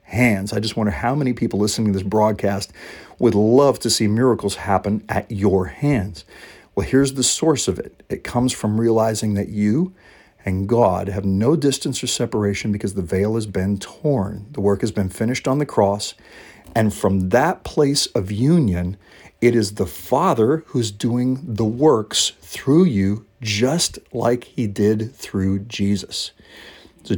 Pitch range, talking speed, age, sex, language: 100-125 Hz, 170 wpm, 50-69, male, English